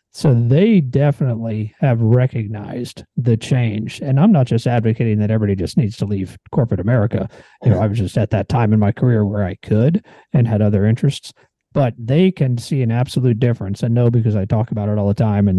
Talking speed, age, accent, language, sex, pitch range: 215 wpm, 40-59, American, English, male, 110-130 Hz